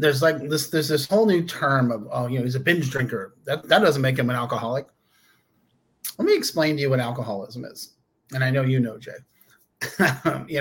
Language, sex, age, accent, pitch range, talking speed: English, male, 30-49, American, 125-150 Hz, 215 wpm